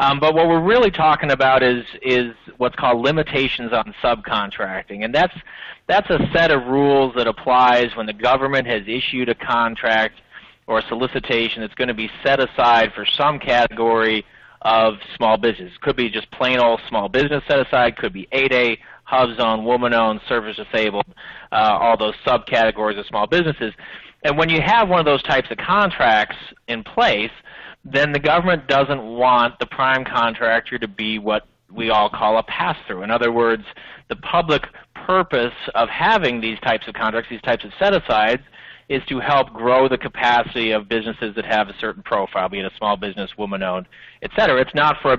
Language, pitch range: English, 110-130 Hz